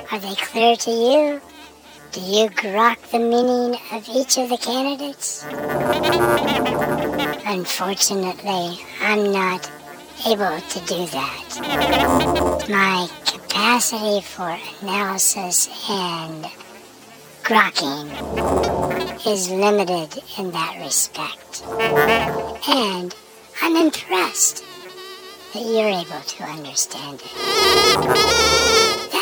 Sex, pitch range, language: male, 190-275 Hz, English